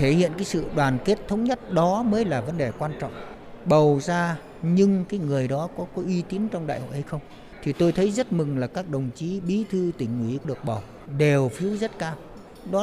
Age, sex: 60-79, male